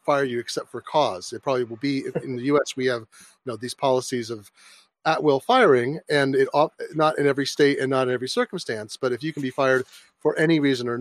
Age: 30-49